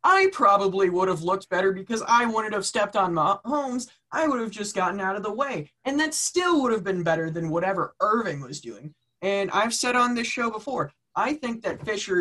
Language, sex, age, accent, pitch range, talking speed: English, male, 20-39, American, 150-235 Hz, 205 wpm